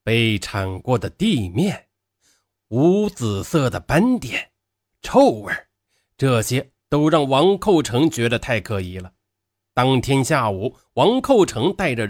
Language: Chinese